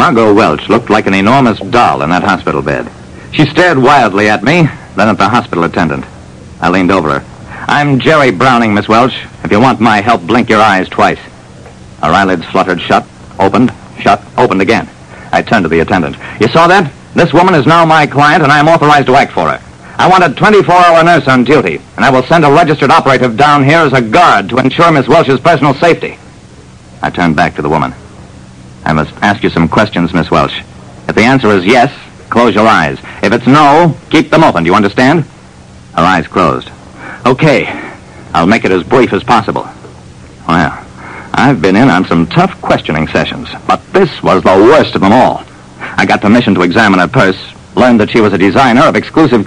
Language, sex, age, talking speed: English, male, 60-79, 205 wpm